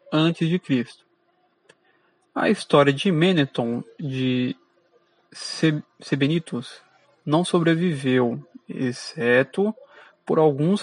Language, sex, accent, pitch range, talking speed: Portuguese, male, Brazilian, 140-190 Hz, 85 wpm